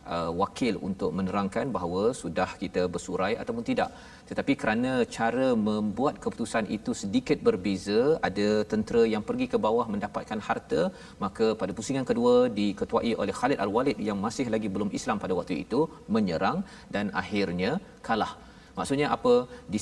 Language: Malayalam